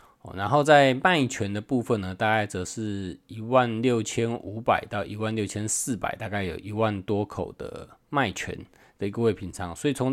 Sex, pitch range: male, 100-125 Hz